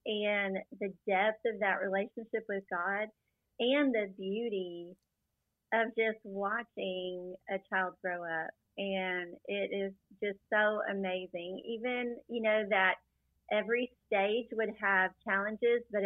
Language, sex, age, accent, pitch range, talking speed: English, female, 30-49, American, 185-210 Hz, 125 wpm